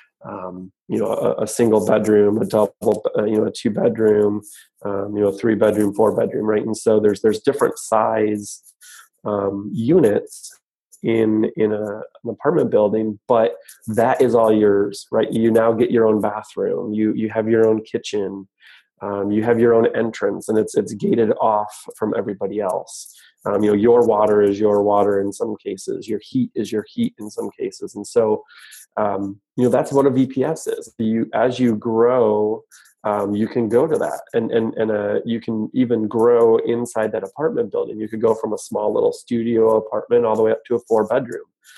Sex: male